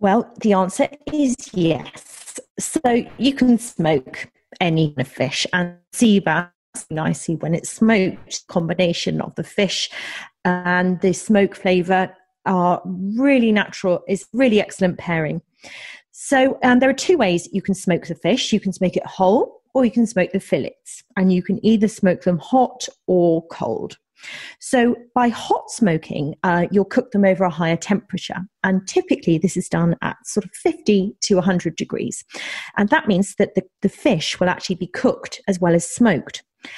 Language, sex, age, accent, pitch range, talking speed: English, female, 40-59, British, 175-225 Hz, 170 wpm